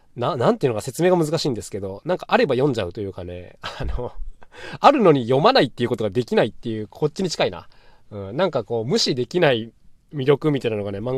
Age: 20-39